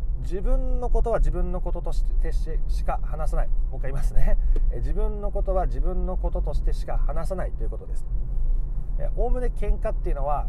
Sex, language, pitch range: male, Japanese, 120-185 Hz